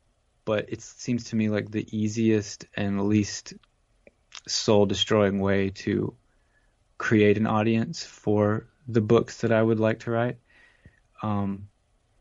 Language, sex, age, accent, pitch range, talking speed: English, male, 20-39, American, 105-115 Hz, 130 wpm